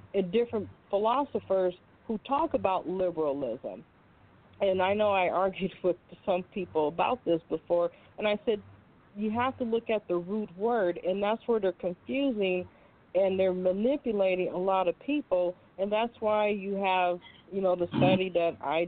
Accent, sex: American, female